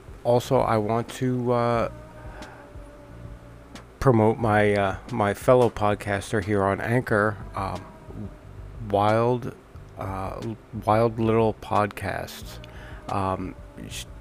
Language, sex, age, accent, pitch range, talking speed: English, male, 40-59, American, 95-115 Hz, 95 wpm